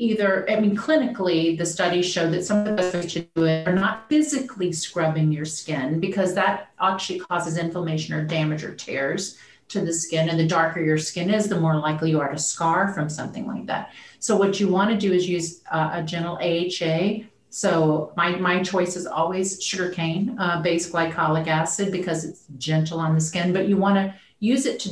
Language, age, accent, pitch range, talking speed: English, 40-59, American, 165-195 Hz, 195 wpm